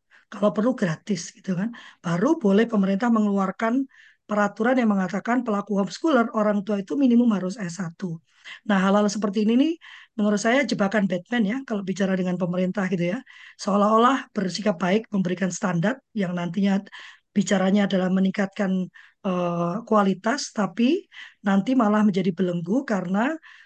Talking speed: 135 wpm